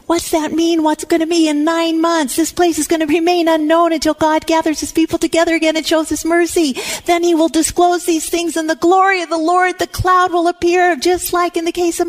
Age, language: 40-59, English